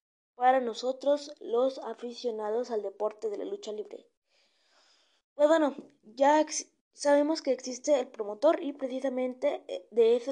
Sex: female